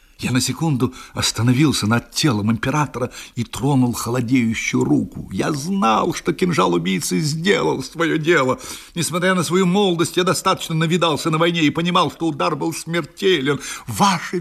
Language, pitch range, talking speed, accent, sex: Russian, 130-190 Hz, 145 wpm, native, male